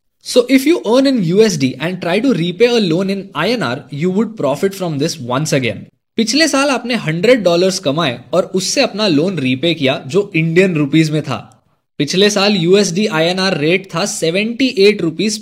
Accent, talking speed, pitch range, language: native, 175 wpm, 150-210 Hz, Hindi